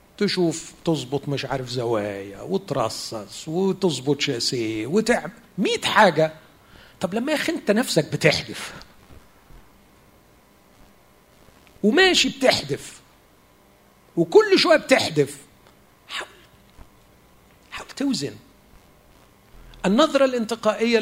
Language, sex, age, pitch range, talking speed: Arabic, male, 50-69, 155-215 Hz, 75 wpm